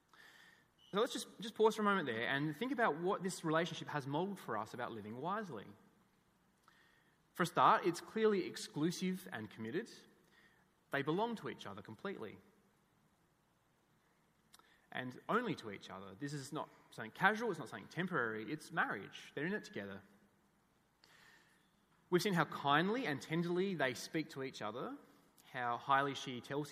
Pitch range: 130-185 Hz